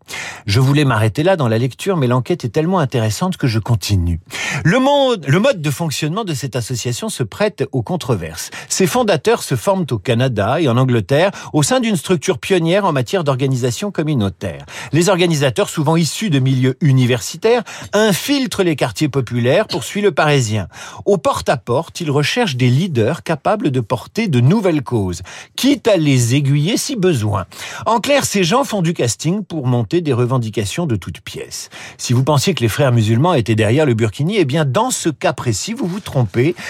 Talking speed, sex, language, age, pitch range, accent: 185 wpm, male, French, 50-69, 125-185 Hz, French